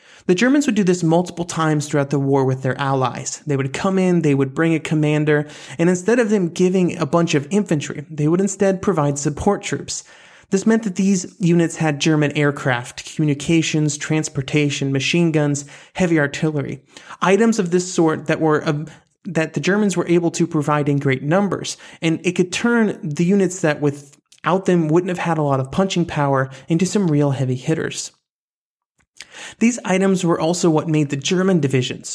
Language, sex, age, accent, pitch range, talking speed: English, male, 30-49, American, 145-180 Hz, 185 wpm